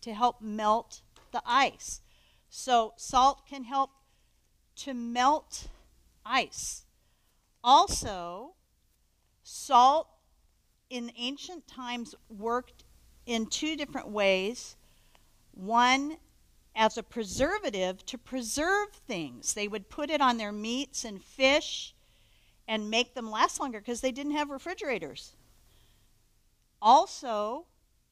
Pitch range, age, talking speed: 225-290 Hz, 50-69, 105 wpm